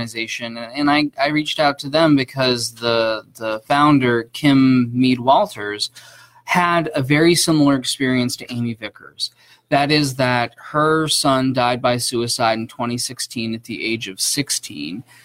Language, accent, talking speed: English, American, 150 wpm